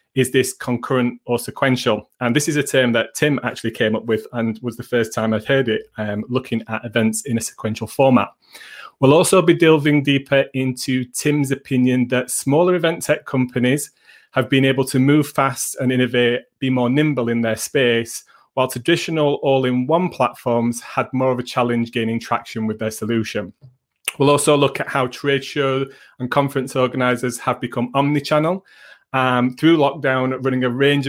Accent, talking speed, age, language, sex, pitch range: British, 180 wpm, 30-49, English, male, 120-140 Hz